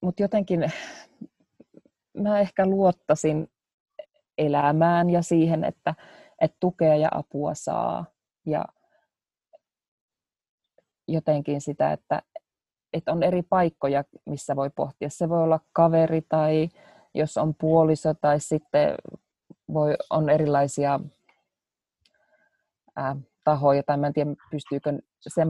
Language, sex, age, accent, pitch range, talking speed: Finnish, female, 20-39, native, 150-185 Hz, 105 wpm